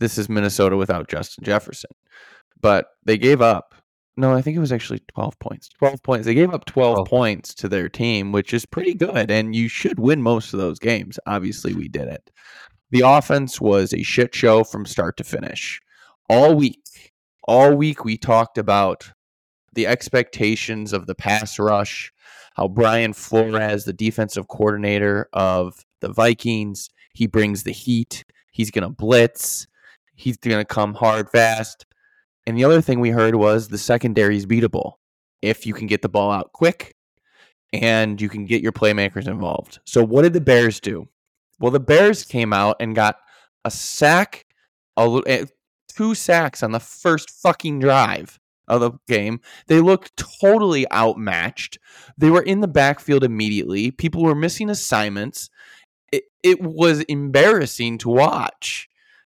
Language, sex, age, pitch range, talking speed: English, male, 20-39, 105-140 Hz, 165 wpm